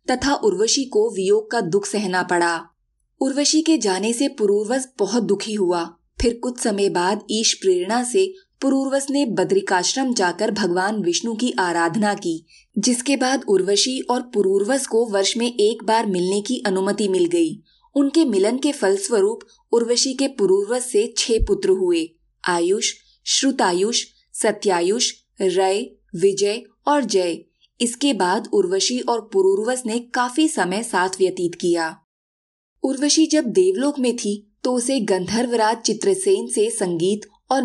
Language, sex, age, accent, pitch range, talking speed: Hindi, female, 20-39, native, 195-270 Hz, 140 wpm